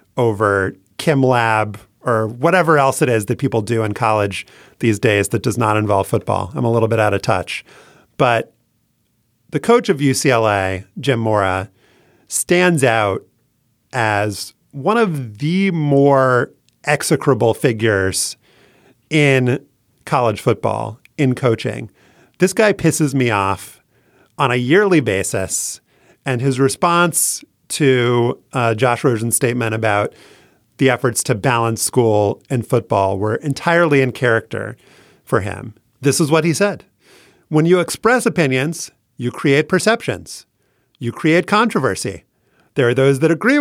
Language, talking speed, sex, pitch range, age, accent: English, 135 wpm, male, 115-155 Hz, 30-49, American